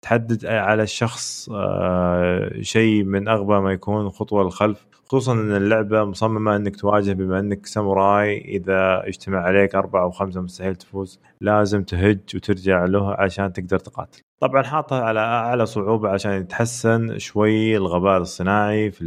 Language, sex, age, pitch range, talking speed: Arabic, male, 20-39, 95-110 Hz, 140 wpm